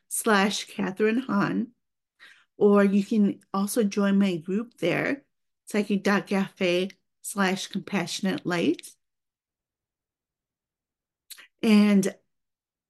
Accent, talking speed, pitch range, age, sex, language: American, 75 wpm, 195-225 Hz, 40-59, female, English